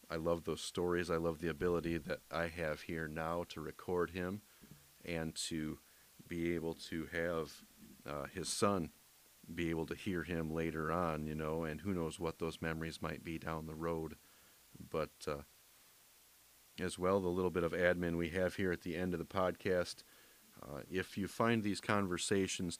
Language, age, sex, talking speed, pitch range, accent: English, 40-59, male, 180 wpm, 80-100 Hz, American